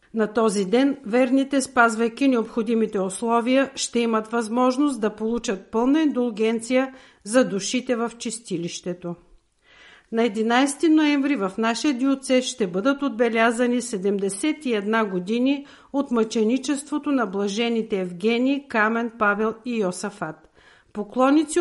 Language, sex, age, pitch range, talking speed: Bulgarian, female, 50-69, 205-265 Hz, 110 wpm